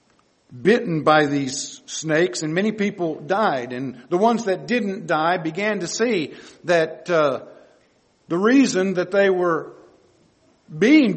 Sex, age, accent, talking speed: male, 50-69, American, 135 wpm